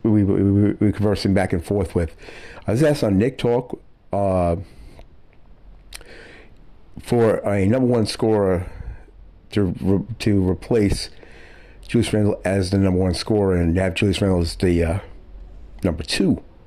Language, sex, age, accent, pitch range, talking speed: English, male, 60-79, American, 80-105 Hz, 140 wpm